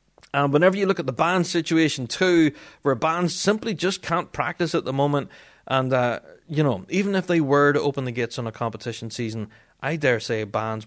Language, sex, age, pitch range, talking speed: English, male, 30-49, 120-185 Hz, 210 wpm